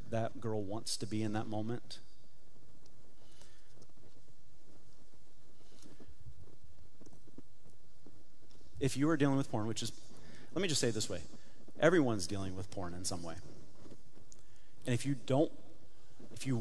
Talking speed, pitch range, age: 130 wpm, 110-135 Hz, 30-49